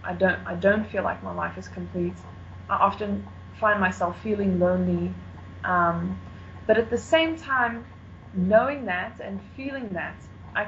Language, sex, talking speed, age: English, female, 155 wpm, 20-39